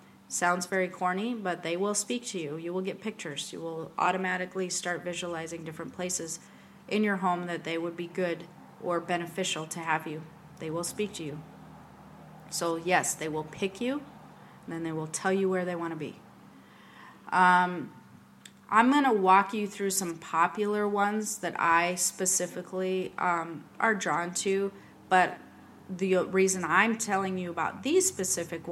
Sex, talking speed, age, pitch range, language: female, 165 wpm, 30-49, 165-190 Hz, English